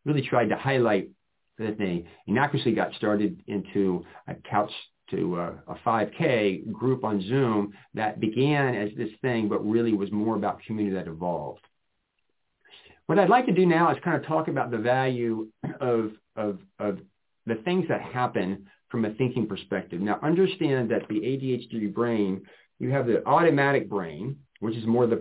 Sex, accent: male, American